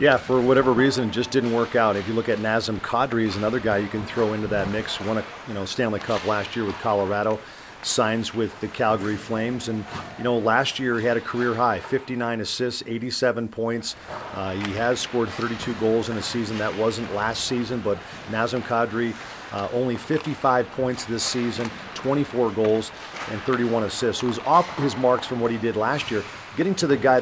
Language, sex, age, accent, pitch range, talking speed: English, male, 40-59, American, 105-125 Hz, 210 wpm